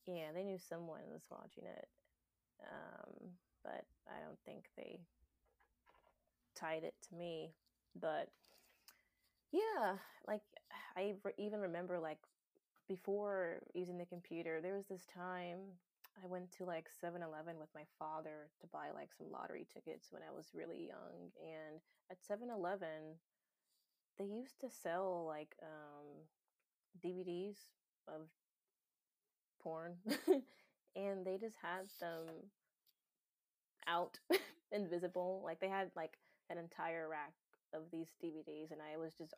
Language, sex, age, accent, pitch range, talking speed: English, female, 20-39, American, 160-190 Hz, 135 wpm